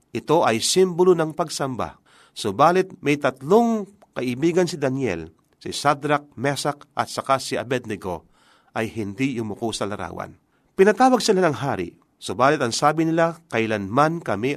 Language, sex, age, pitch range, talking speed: Filipino, male, 40-59, 110-175 Hz, 140 wpm